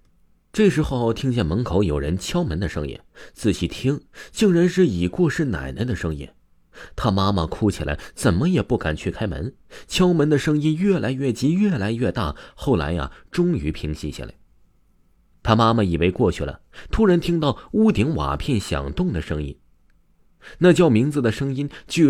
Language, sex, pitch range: Chinese, male, 85-140 Hz